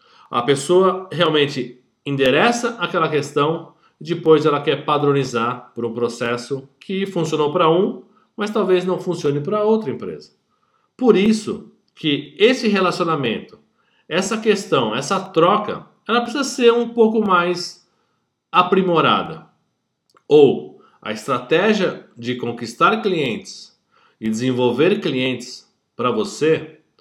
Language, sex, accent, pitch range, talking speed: Portuguese, male, Brazilian, 150-225 Hz, 115 wpm